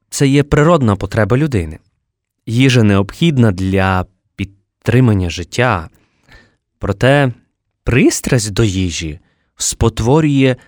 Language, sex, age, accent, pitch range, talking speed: Ukrainian, male, 20-39, native, 105-140 Hz, 85 wpm